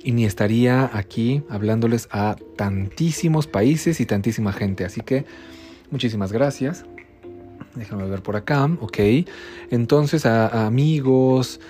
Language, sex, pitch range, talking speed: Spanish, male, 105-140 Hz, 125 wpm